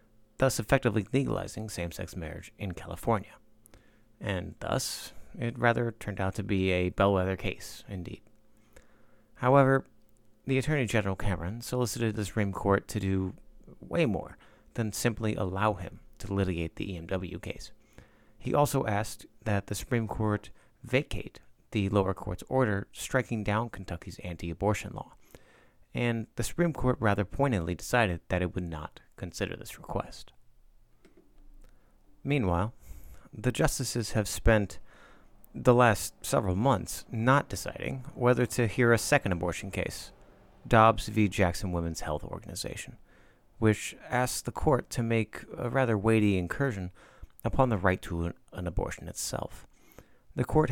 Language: English